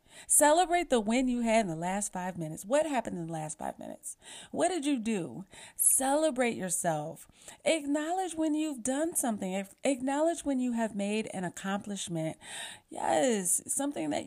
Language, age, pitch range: English, 30-49, 170-250 Hz